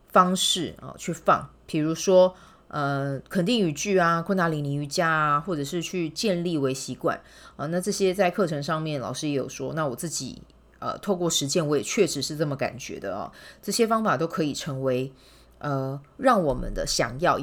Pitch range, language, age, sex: 145-190 Hz, Chinese, 30-49, female